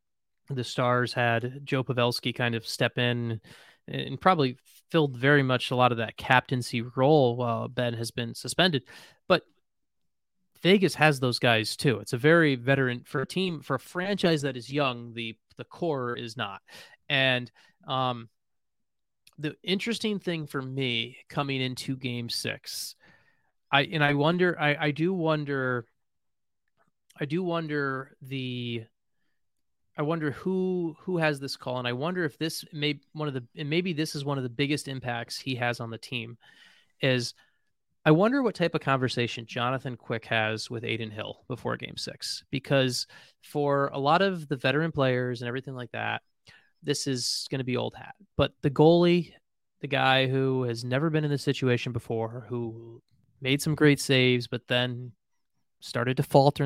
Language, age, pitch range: English, 30-49, 120-150 Hz